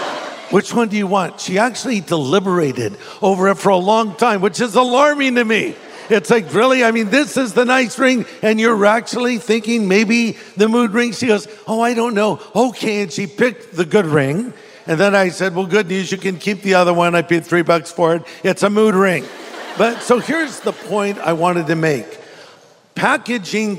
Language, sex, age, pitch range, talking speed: English, male, 50-69, 185-225 Hz, 210 wpm